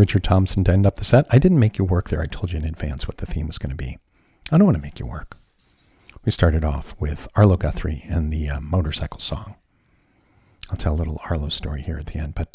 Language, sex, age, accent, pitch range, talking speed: English, male, 50-69, American, 80-95 Hz, 260 wpm